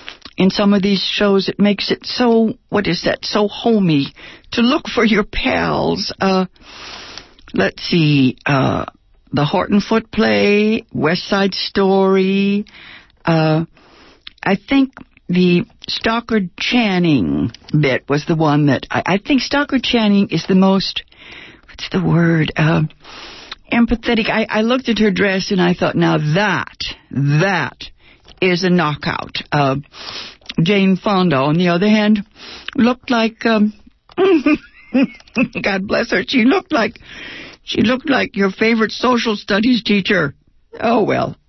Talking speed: 135 wpm